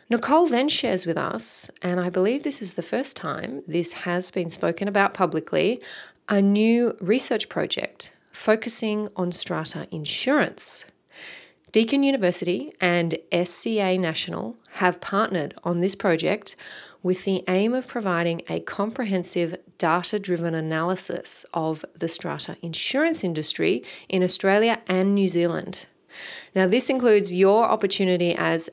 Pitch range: 175-215 Hz